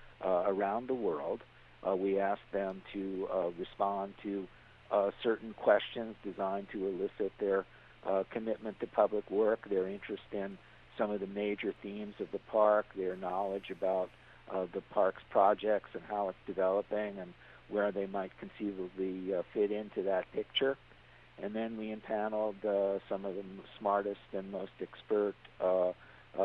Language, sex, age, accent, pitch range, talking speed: English, male, 50-69, American, 95-105 Hz, 155 wpm